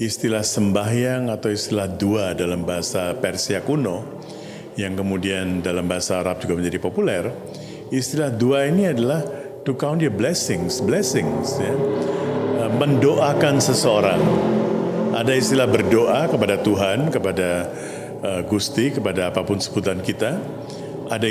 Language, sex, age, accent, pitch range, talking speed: Indonesian, male, 50-69, native, 100-140 Hz, 115 wpm